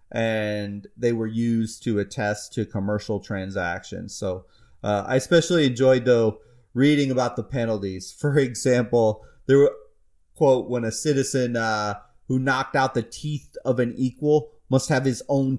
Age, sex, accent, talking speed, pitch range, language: 30-49, male, American, 155 wpm, 100-130 Hz, English